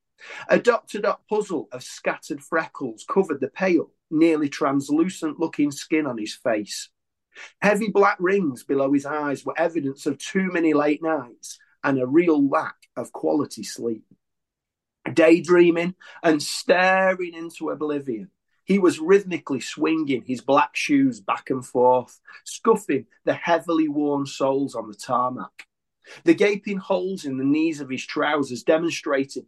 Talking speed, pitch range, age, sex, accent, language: 140 wpm, 130-170 Hz, 40-59, male, British, English